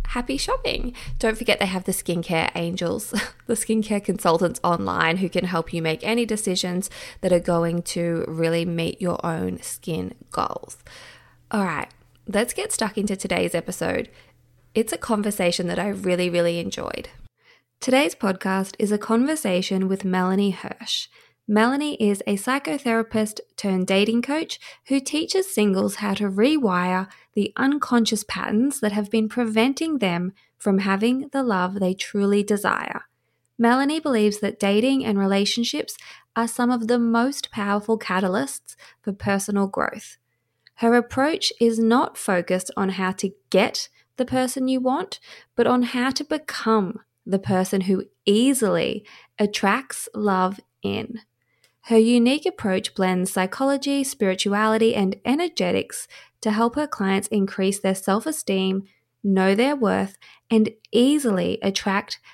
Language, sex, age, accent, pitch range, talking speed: English, female, 20-39, Australian, 190-240 Hz, 140 wpm